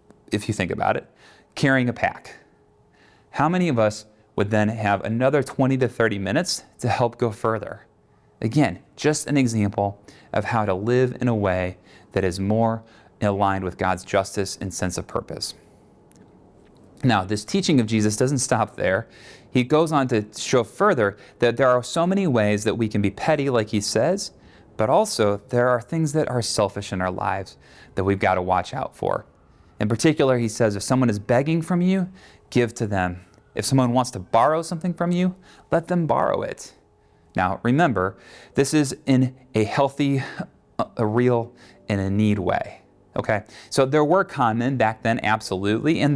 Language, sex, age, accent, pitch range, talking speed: English, male, 30-49, American, 100-140 Hz, 180 wpm